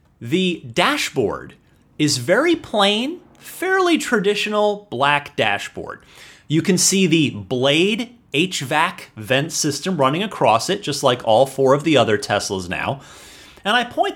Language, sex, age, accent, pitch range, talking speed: English, male, 30-49, American, 125-195 Hz, 135 wpm